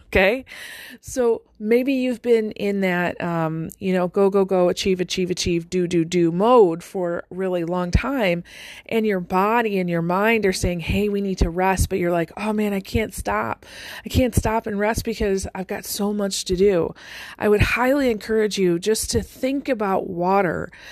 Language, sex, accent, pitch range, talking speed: English, female, American, 180-220 Hz, 195 wpm